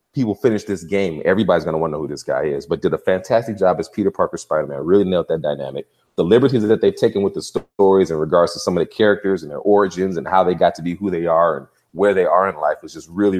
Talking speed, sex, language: 285 wpm, male, English